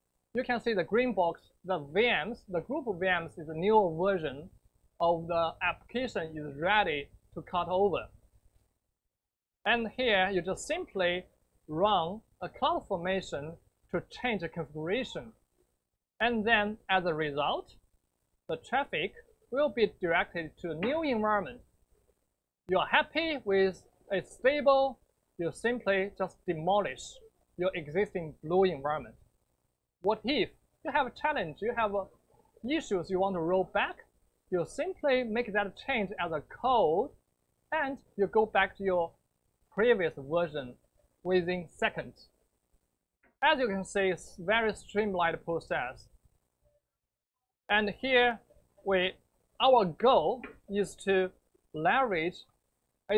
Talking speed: 130 wpm